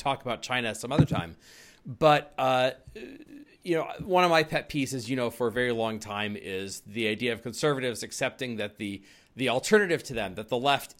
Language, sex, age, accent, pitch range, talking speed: English, male, 40-59, American, 115-150 Hz, 200 wpm